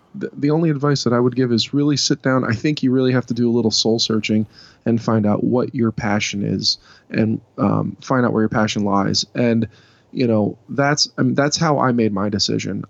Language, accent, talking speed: English, American, 230 wpm